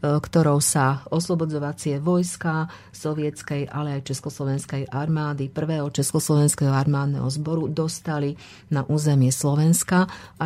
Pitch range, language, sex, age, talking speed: 140-160 Hz, Slovak, female, 40-59, 105 wpm